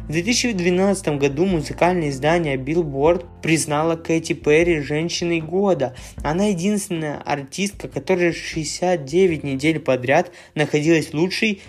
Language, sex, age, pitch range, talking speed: Russian, male, 20-39, 145-180 Hz, 110 wpm